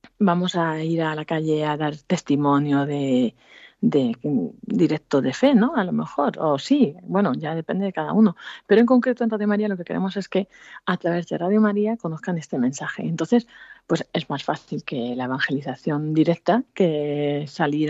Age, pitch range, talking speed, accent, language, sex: 30-49, 165-215 Hz, 190 wpm, Spanish, Spanish, female